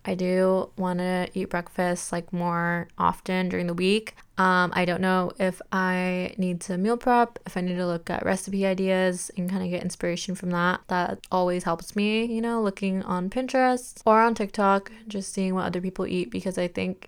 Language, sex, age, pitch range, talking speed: English, female, 20-39, 185-205 Hz, 205 wpm